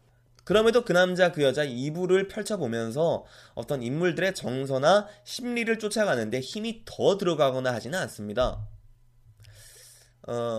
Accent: native